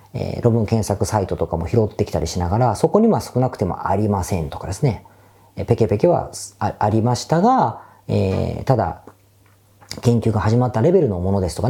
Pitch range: 100-165 Hz